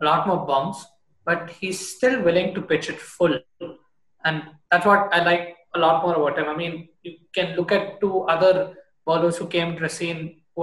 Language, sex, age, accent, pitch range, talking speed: English, male, 20-39, Indian, 155-185 Hz, 205 wpm